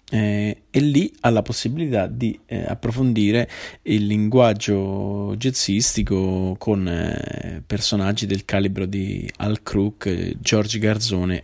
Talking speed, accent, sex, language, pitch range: 120 wpm, native, male, Italian, 100-115 Hz